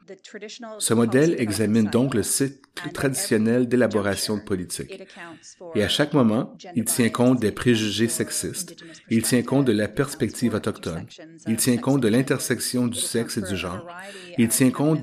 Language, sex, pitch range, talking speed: English, male, 110-145 Hz, 160 wpm